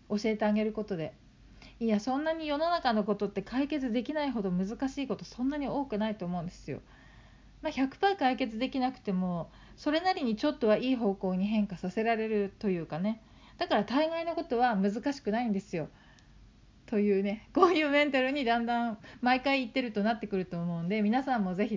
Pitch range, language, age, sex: 205-270 Hz, Japanese, 40-59, female